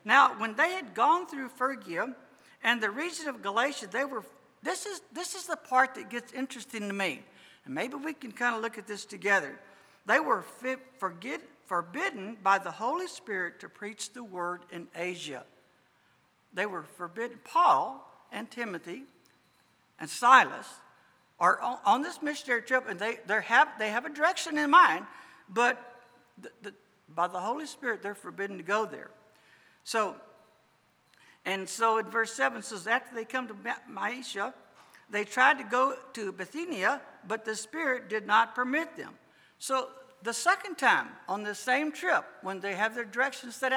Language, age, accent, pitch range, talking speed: English, 60-79, American, 210-275 Hz, 165 wpm